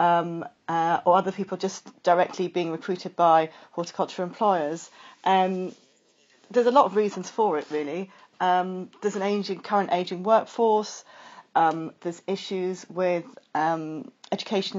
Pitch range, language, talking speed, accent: 180-220 Hz, English, 140 wpm, British